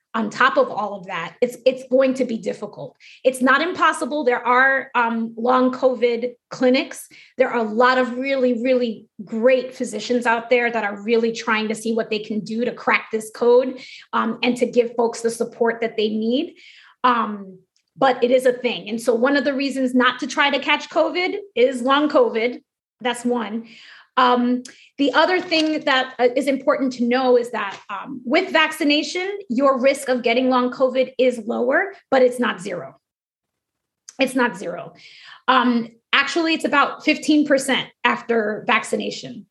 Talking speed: 175 wpm